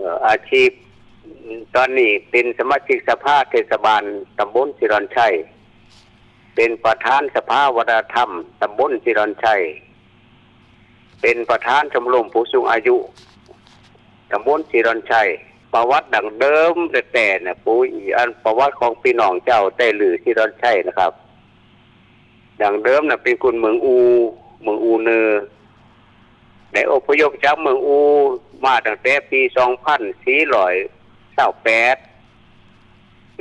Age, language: 60-79, Thai